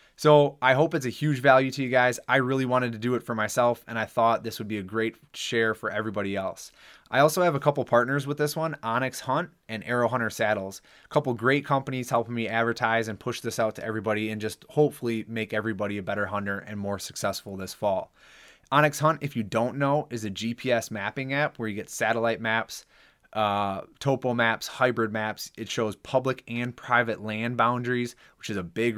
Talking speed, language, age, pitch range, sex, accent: 215 wpm, English, 20-39, 105-130 Hz, male, American